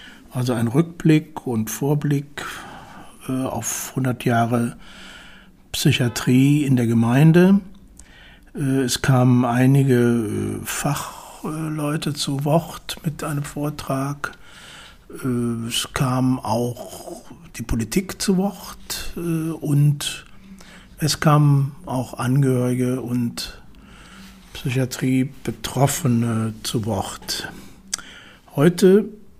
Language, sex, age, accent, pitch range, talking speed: German, male, 60-79, German, 125-155 Hz, 90 wpm